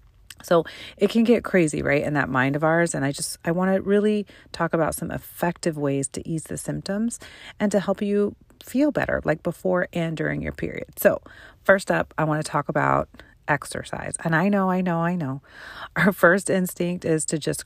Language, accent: English, American